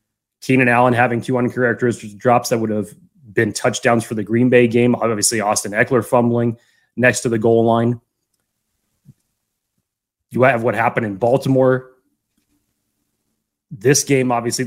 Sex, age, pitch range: male, 20-39, 110-135 Hz